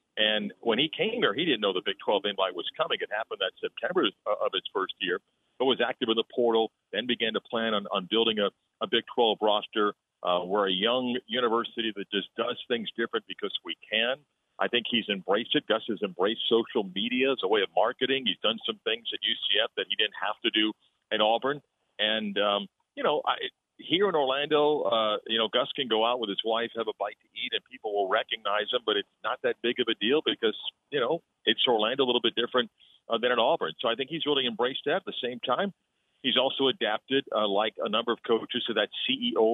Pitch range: 110-135 Hz